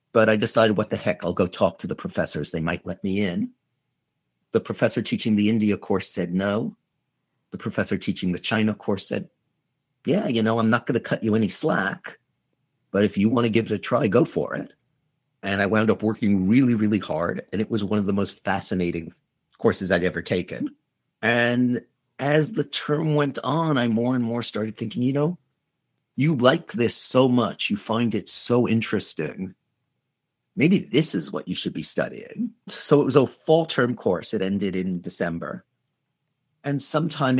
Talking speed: 195 wpm